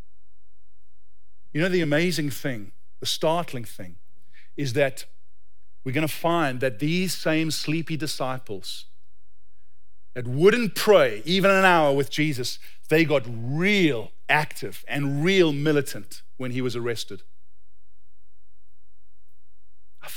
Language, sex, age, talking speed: English, male, 40-59, 115 wpm